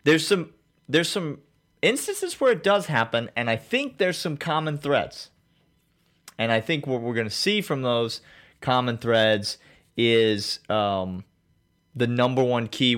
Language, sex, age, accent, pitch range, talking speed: English, male, 30-49, American, 105-140 Hz, 155 wpm